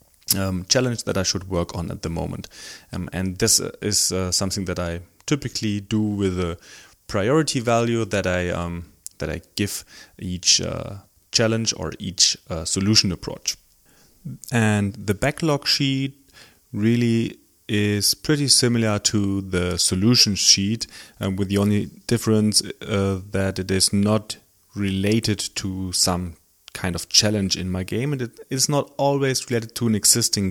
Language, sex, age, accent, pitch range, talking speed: English, male, 30-49, German, 95-115 Hz, 155 wpm